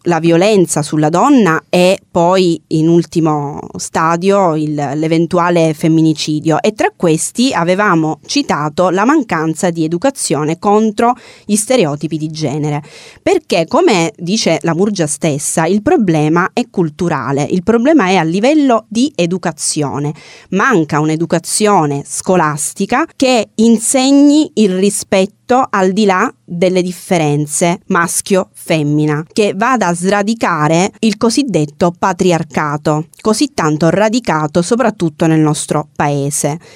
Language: Italian